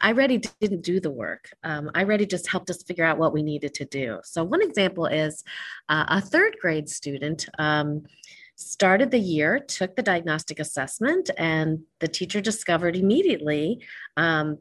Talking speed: 175 wpm